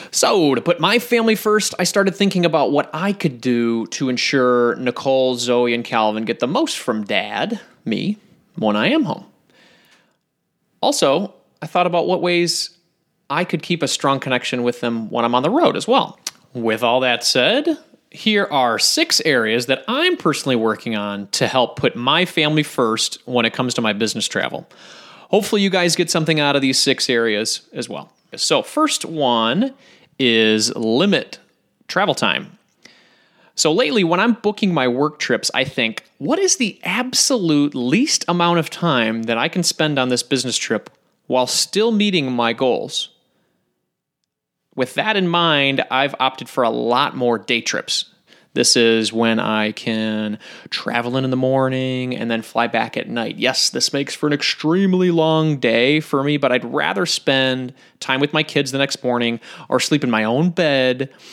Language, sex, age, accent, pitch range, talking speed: English, male, 30-49, American, 120-175 Hz, 180 wpm